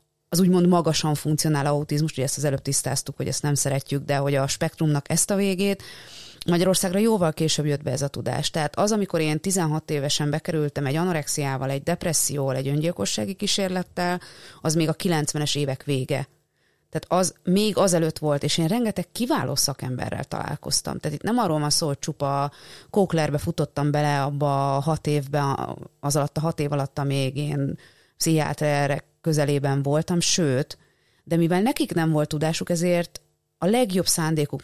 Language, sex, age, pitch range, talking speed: Hungarian, female, 30-49, 145-180 Hz, 165 wpm